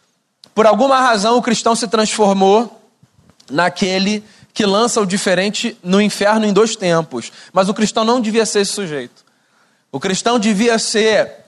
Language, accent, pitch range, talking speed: Portuguese, Brazilian, 195-230 Hz, 150 wpm